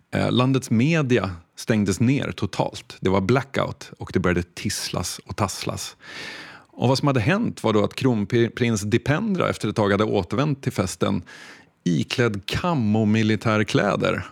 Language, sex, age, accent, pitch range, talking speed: Swedish, male, 30-49, native, 105-140 Hz, 135 wpm